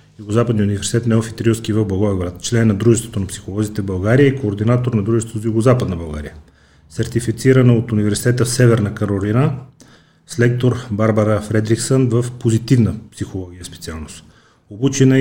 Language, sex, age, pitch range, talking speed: Bulgarian, male, 30-49, 100-120 Hz, 130 wpm